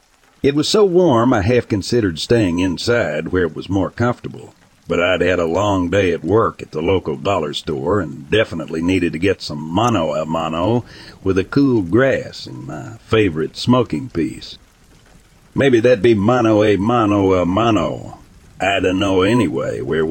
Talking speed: 175 wpm